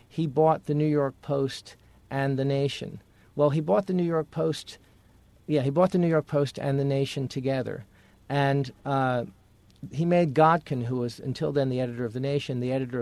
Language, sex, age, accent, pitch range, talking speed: English, male, 50-69, American, 120-145 Hz, 200 wpm